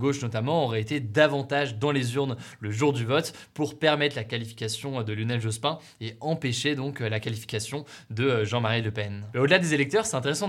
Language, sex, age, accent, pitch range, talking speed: French, male, 20-39, French, 120-155 Hz, 195 wpm